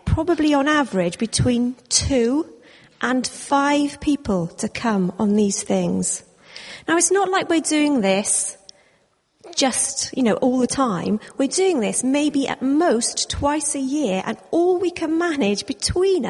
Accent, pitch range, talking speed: British, 205-265 Hz, 150 wpm